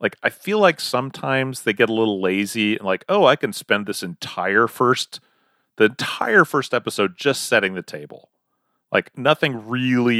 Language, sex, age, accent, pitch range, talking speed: English, male, 30-49, American, 100-140 Hz, 175 wpm